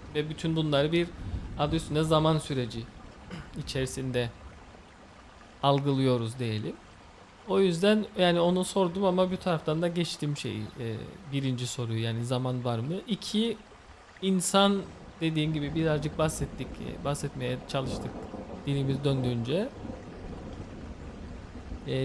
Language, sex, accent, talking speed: English, male, Turkish, 110 wpm